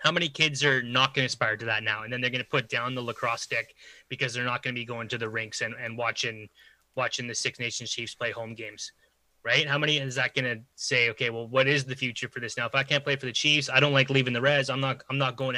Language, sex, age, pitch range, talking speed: English, male, 20-39, 120-140 Hz, 285 wpm